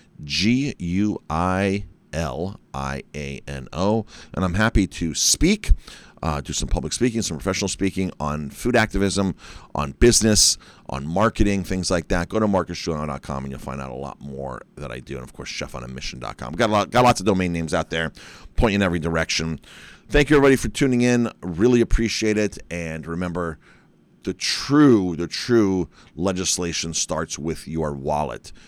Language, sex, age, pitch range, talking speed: English, male, 40-59, 80-105 Hz, 170 wpm